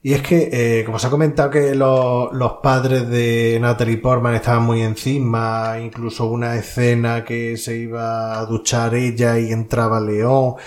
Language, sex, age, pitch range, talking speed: Spanish, male, 20-39, 115-140 Hz, 170 wpm